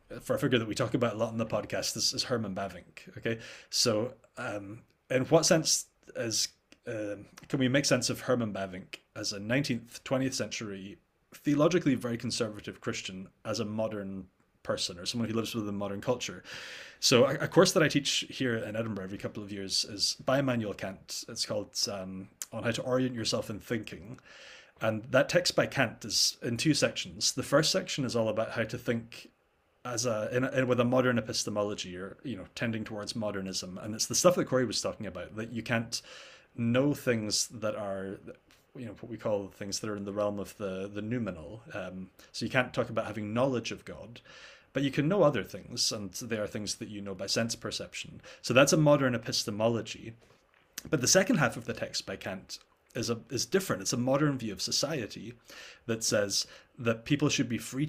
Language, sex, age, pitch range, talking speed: English, male, 30-49, 105-130 Hz, 205 wpm